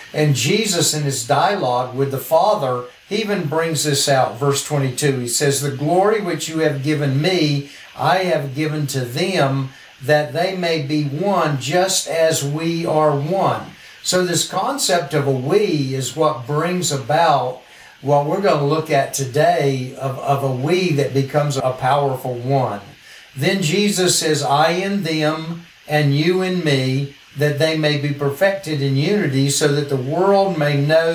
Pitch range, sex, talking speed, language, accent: 140-170 Hz, male, 170 wpm, English, American